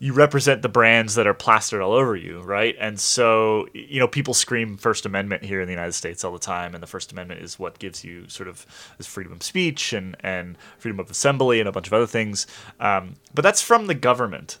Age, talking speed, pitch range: 30-49, 240 wpm, 100-135 Hz